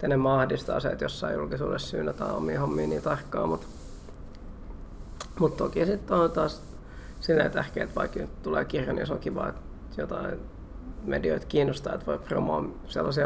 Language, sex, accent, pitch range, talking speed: Finnish, male, native, 95-150 Hz, 165 wpm